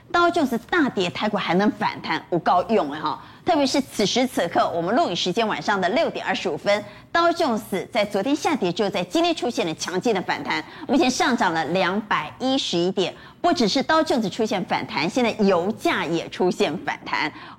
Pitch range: 185-285 Hz